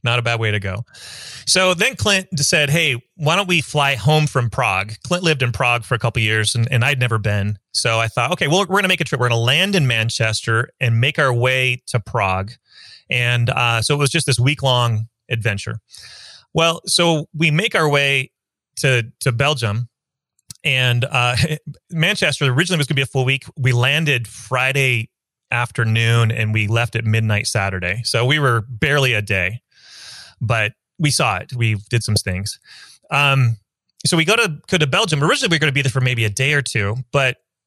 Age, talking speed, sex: 30-49, 205 wpm, male